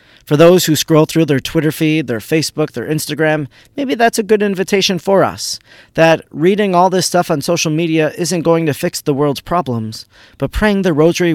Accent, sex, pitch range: American, male, 130-175 Hz